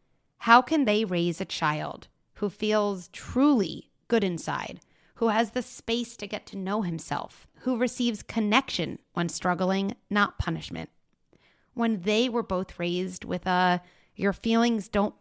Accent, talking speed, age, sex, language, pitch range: American, 145 wpm, 30-49, female, English, 175-215 Hz